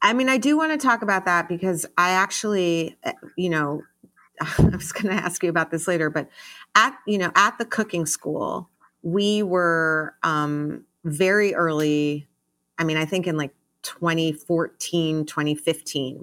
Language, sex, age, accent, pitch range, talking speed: English, female, 30-49, American, 150-180 Hz, 165 wpm